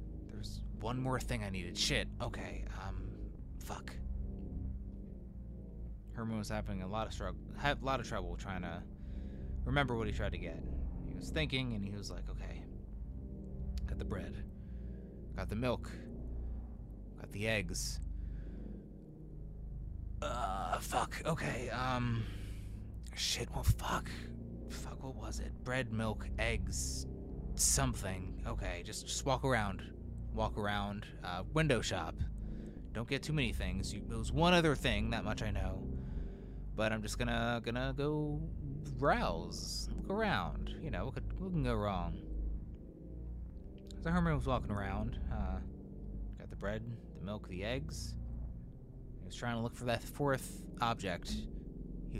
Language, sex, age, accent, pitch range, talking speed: English, male, 20-39, American, 75-115 Hz, 140 wpm